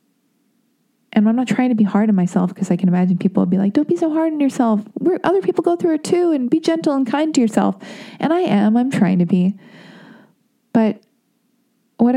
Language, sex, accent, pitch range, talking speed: English, female, American, 195-240 Hz, 220 wpm